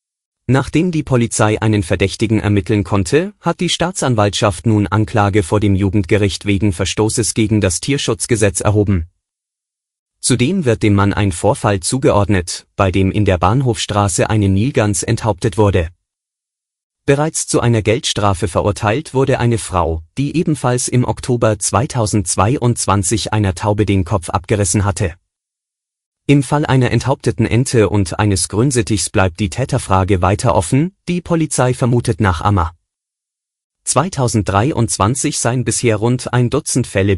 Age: 30-49